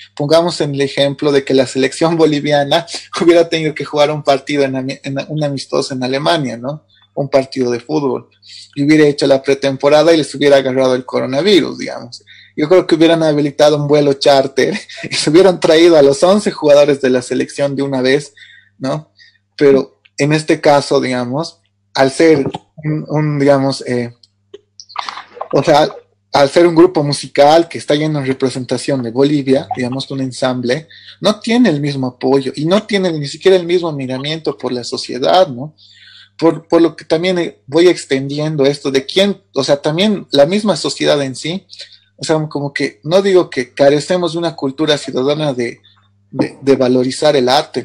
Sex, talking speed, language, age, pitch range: male, 180 wpm, Spanish, 30-49, 130-160 Hz